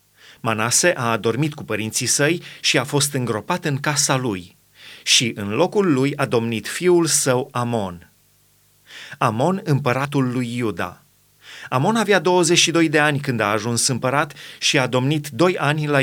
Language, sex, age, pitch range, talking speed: Romanian, male, 30-49, 130-170 Hz, 155 wpm